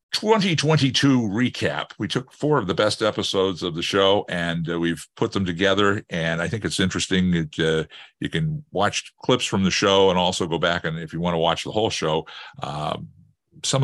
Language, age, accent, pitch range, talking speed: English, 50-69, American, 85-105 Hz, 205 wpm